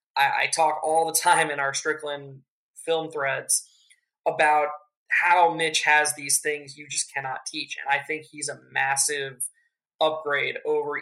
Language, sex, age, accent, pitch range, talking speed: English, male, 20-39, American, 145-170 Hz, 150 wpm